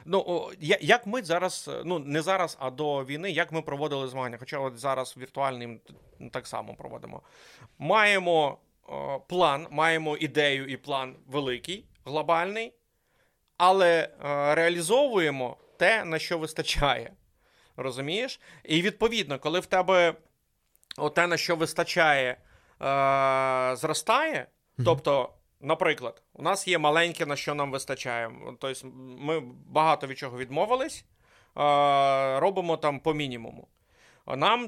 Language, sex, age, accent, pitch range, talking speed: Ukrainian, male, 30-49, native, 135-170 Hz, 115 wpm